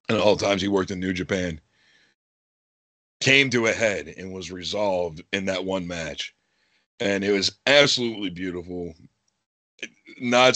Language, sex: English, male